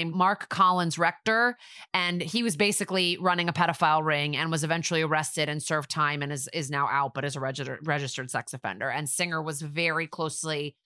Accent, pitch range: American, 160-200 Hz